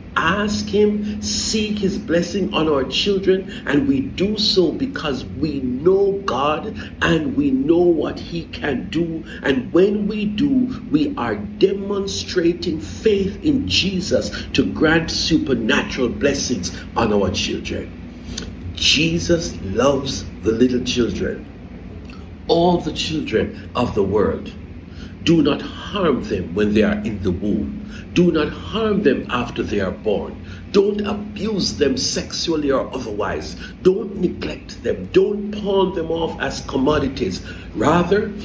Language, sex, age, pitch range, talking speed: English, male, 60-79, 155-210 Hz, 135 wpm